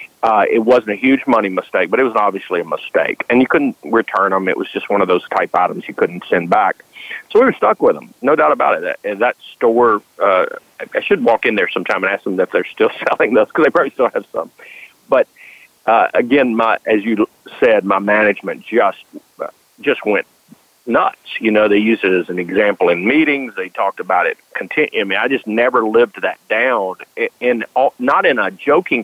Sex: male